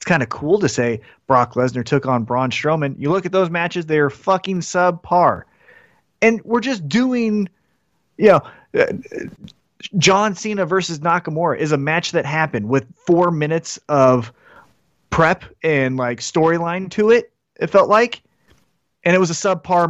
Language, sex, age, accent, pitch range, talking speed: English, male, 30-49, American, 145-225 Hz, 160 wpm